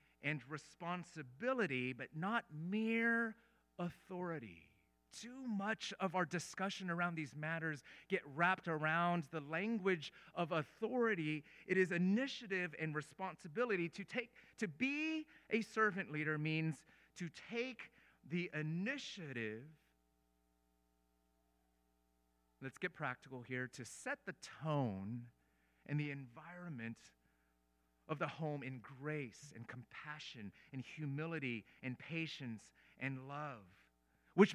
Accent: American